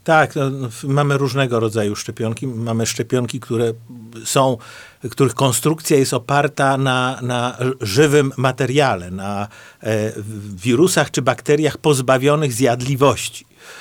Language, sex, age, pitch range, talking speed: Polish, male, 50-69, 115-150 Hz, 110 wpm